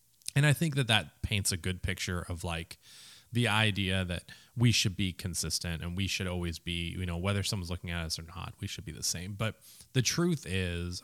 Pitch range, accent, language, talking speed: 90-115 Hz, American, English, 225 wpm